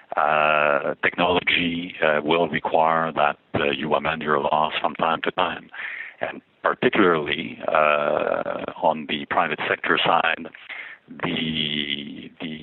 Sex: male